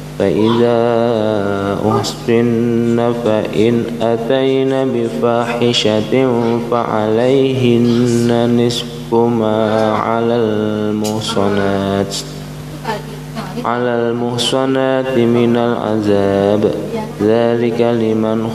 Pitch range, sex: 110-120 Hz, male